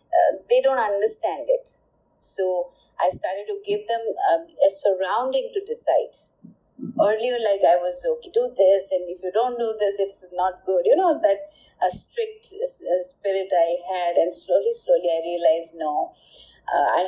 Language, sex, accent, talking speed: English, female, Indian, 170 wpm